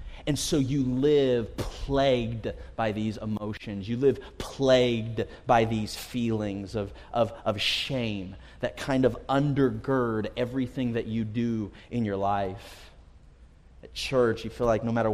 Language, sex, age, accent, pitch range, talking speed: English, male, 30-49, American, 100-120 Hz, 145 wpm